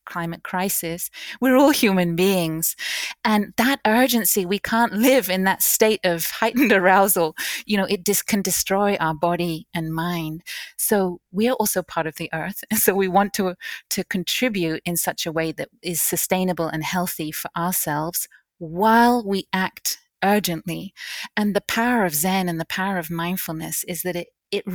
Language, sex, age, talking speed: English, female, 30-49, 175 wpm